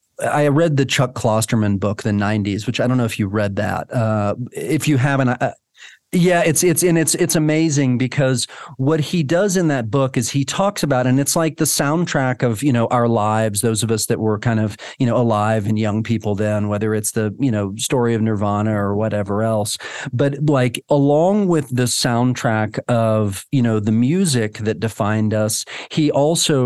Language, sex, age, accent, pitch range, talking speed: English, male, 40-59, American, 110-140 Hz, 195 wpm